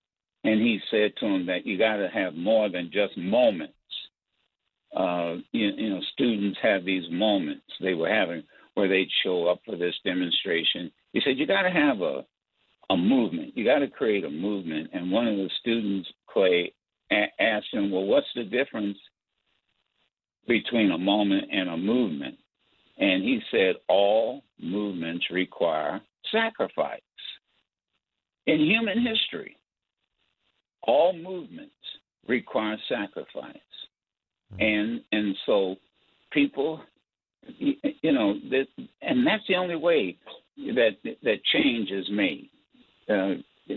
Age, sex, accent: 60-79, male, American